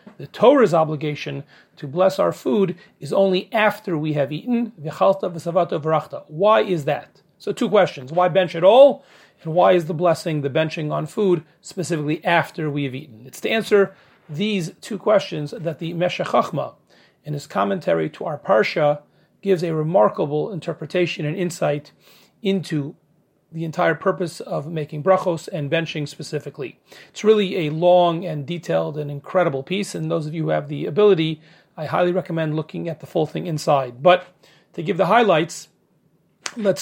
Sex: male